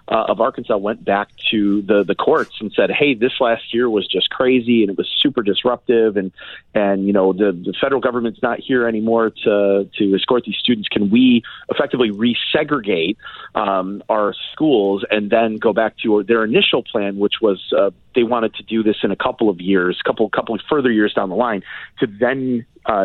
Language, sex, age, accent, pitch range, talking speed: English, male, 40-59, American, 100-120 Hz, 205 wpm